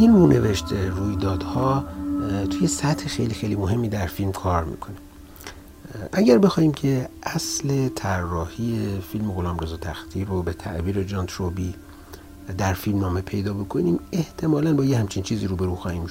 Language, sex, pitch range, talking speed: Persian, male, 90-110 Hz, 145 wpm